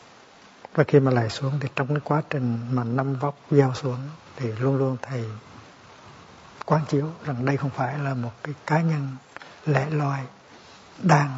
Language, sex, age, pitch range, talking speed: Vietnamese, male, 60-79, 125-150 Hz, 175 wpm